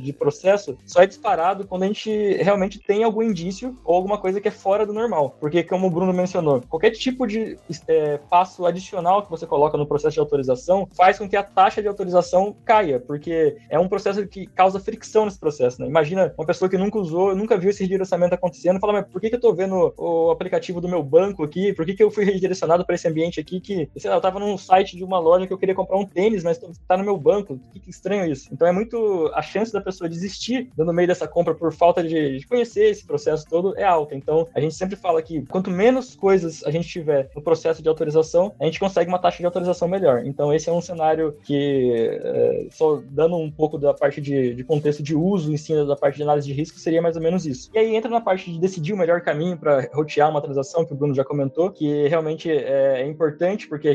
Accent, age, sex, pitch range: Brazilian, 20-39, male, 155-200 Hz